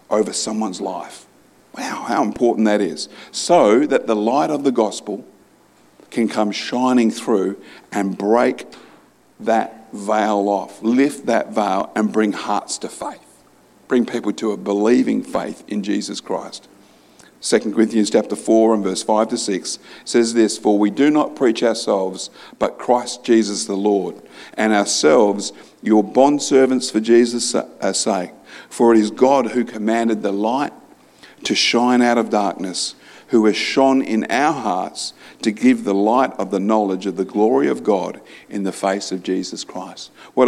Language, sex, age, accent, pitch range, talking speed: English, male, 50-69, Australian, 105-125 Hz, 160 wpm